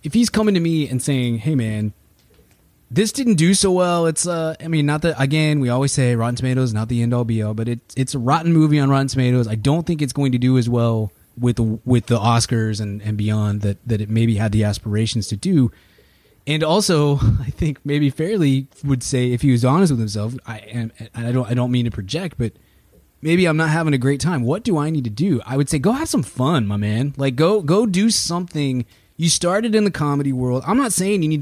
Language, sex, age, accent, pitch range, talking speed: English, male, 20-39, American, 115-155 Hz, 245 wpm